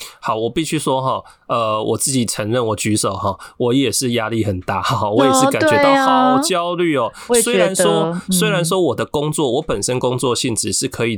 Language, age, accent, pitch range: Chinese, 20-39, native, 130-175 Hz